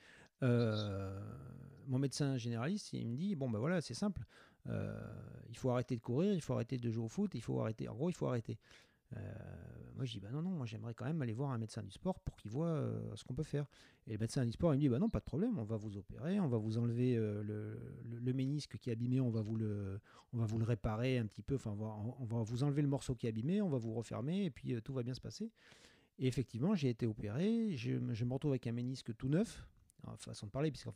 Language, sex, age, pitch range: French, male, 40-59, 110-140 Hz